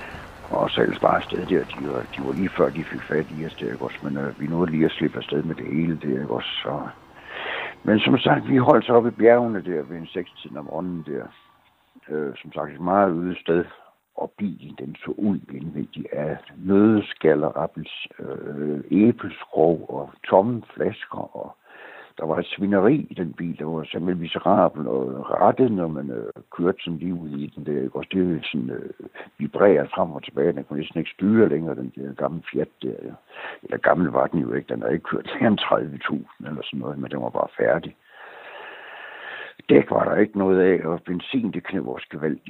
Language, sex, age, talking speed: Danish, male, 60-79, 200 wpm